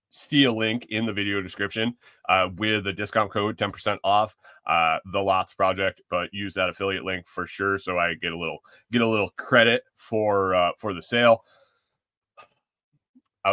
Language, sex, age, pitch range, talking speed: English, male, 30-49, 95-125 Hz, 175 wpm